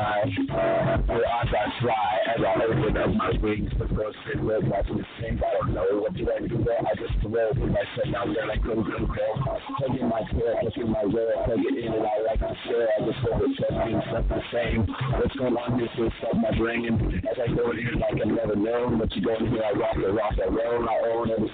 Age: 50-69